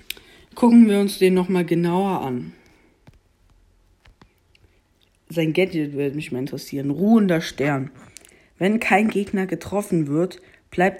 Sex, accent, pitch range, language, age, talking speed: female, German, 145-190 Hz, German, 50-69, 120 wpm